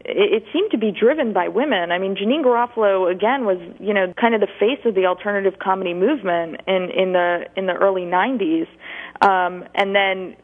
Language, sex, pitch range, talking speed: English, female, 180-205 Hz, 195 wpm